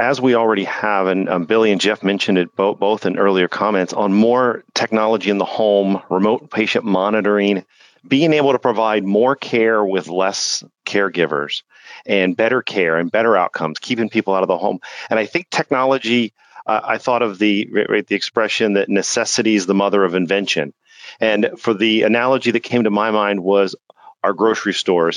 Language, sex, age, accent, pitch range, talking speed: English, male, 40-59, American, 100-120 Hz, 185 wpm